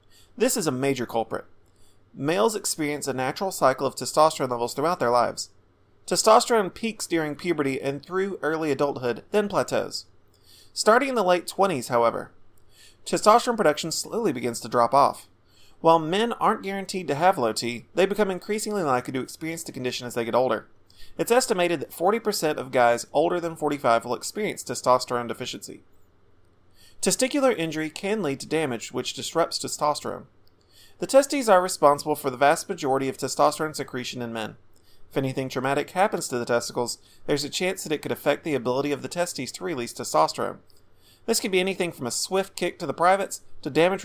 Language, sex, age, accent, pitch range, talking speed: English, male, 30-49, American, 120-180 Hz, 175 wpm